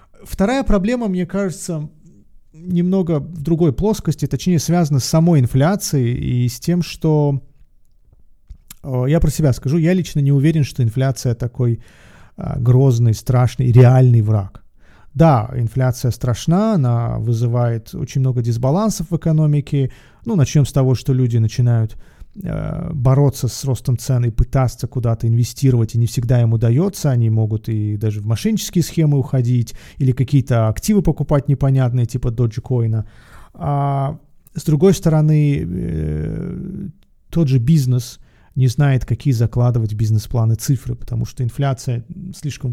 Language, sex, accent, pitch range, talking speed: Russian, male, native, 120-155 Hz, 130 wpm